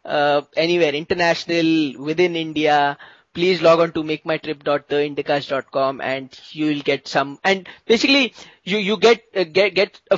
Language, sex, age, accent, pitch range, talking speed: English, male, 20-39, Indian, 145-190 Hz, 140 wpm